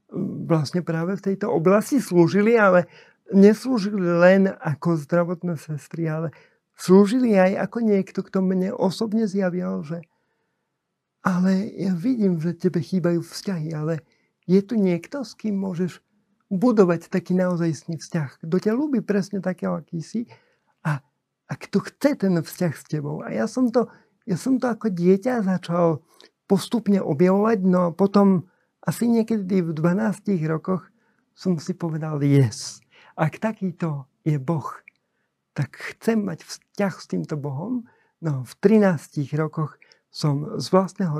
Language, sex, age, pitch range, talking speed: Slovak, male, 50-69, 160-200 Hz, 140 wpm